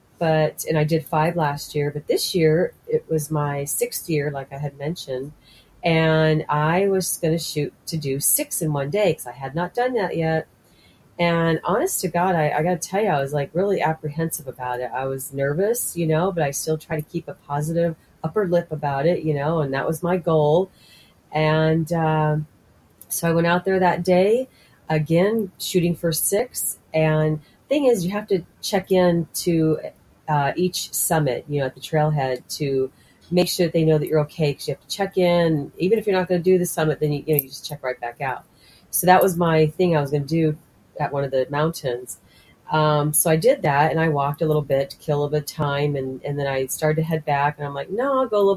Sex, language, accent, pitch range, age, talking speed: female, English, American, 145-170 Hz, 40-59, 235 wpm